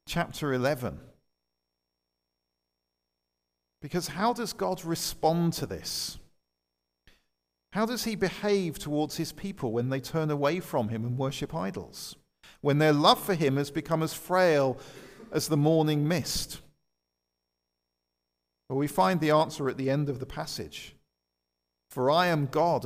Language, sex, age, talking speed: English, male, 50-69, 140 wpm